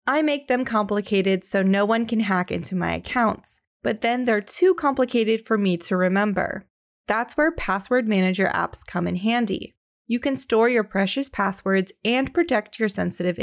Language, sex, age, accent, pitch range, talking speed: English, female, 20-39, American, 190-240 Hz, 175 wpm